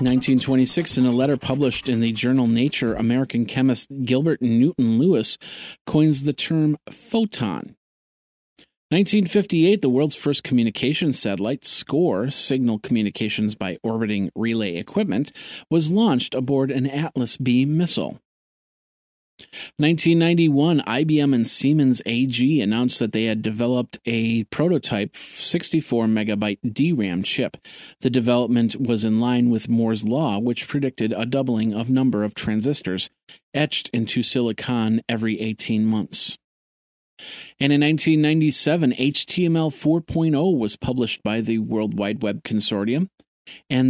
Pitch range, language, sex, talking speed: 115-150 Hz, English, male, 120 wpm